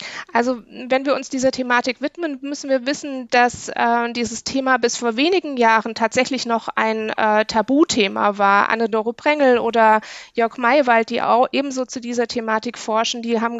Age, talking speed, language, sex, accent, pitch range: 20-39, 170 wpm, German, female, German, 225-265 Hz